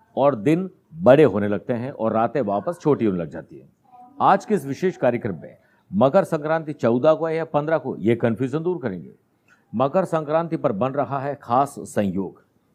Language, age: Hindi, 60-79